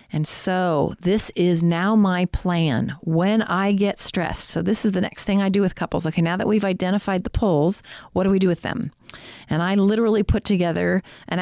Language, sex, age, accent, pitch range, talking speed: English, female, 40-59, American, 160-200 Hz, 210 wpm